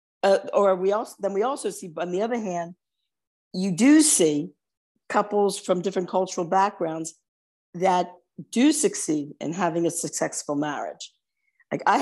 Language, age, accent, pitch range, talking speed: English, 50-69, American, 175-205 Hz, 150 wpm